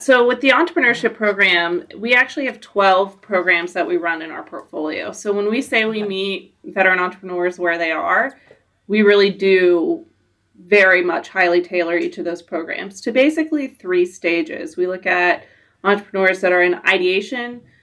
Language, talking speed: English, 170 wpm